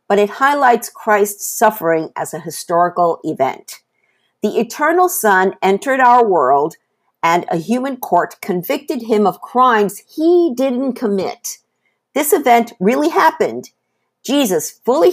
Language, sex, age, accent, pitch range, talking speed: English, female, 50-69, American, 170-250 Hz, 125 wpm